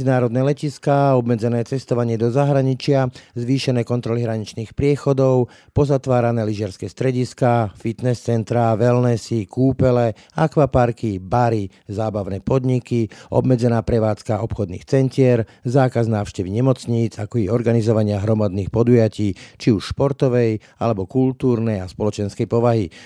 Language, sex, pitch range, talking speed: Slovak, male, 105-130 Hz, 105 wpm